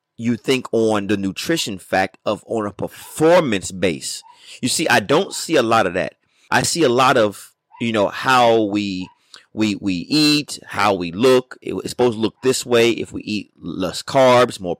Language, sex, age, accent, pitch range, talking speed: English, male, 30-49, American, 105-140 Hz, 190 wpm